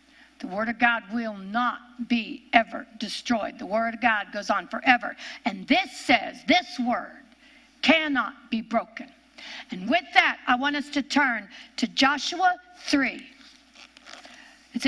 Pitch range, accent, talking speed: 250-300 Hz, American, 145 wpm